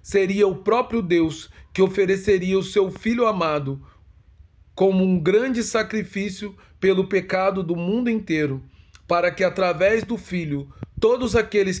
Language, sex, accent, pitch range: Portuguese, male, Brazilian, 155-195 Hz